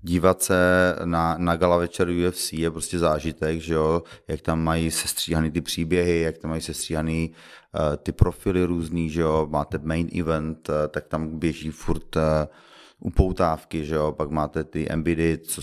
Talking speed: 175 wpm